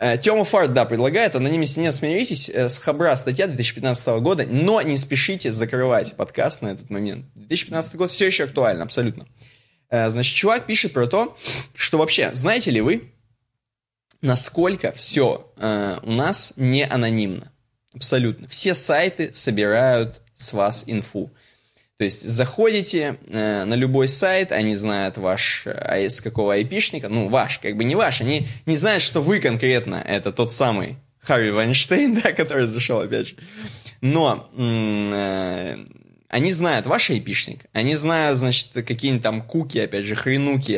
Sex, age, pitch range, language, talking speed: male, 20-39, 115-150 Hz, Russian, 145 wpm